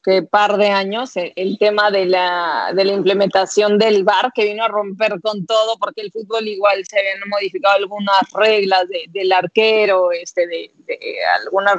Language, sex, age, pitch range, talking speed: Spanish, female, 30-49, 185-205 Hz, 180 wpm